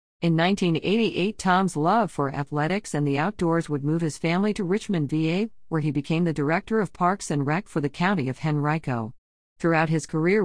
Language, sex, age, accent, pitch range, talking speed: English, female, 50-69, American, 145-185 Hz, 190 wpm